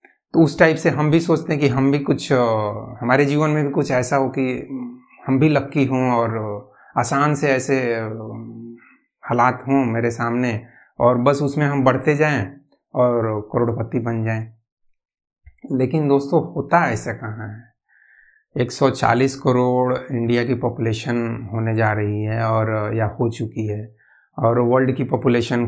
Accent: native